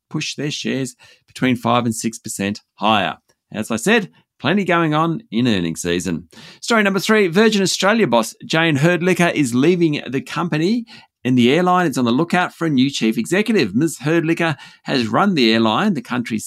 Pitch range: 115-165 Hz